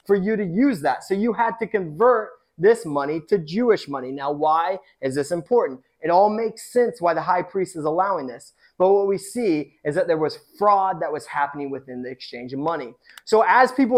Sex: male